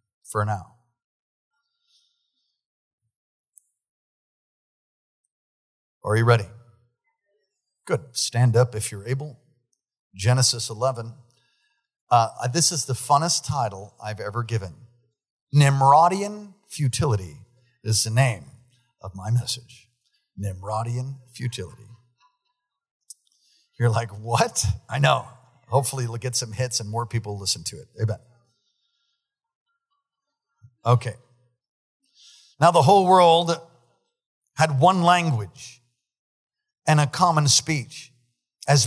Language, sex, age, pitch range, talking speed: English, male, 50-69, 120-165 Hz, 95 wpm